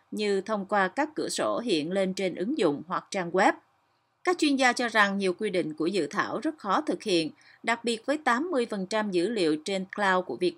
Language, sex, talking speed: Vietnamese, female, 220 wpm